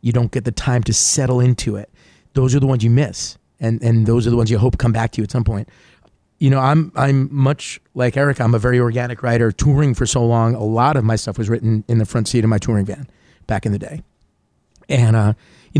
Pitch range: 110-130 Hz